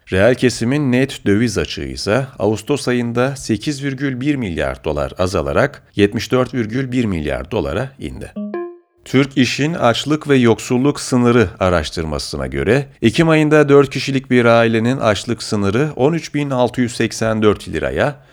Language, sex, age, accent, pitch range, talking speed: Turkish, male, 40-59, native, 100-135 Hz, 110 wpm